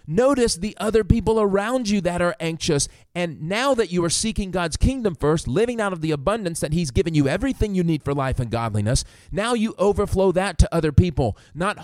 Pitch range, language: 100-160 Hz, English